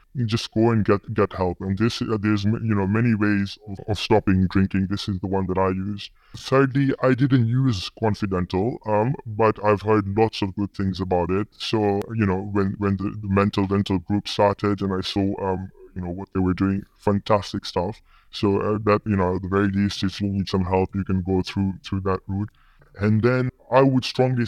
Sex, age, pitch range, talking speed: female, 20-39, 95-110 Hz, 220 wpm